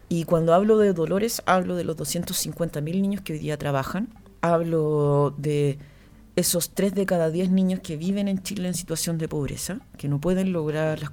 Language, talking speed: Spanish, 190 wpm